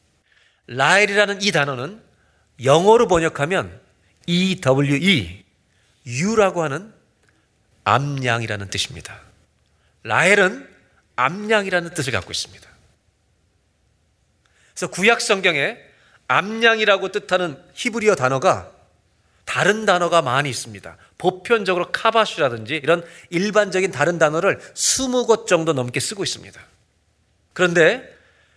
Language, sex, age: Korean, male, 40-59